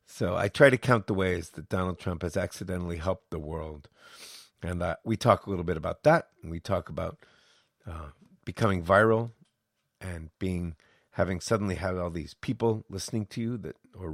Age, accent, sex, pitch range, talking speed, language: 50-69, American, male, 90-110 Hz, 185 wpm, English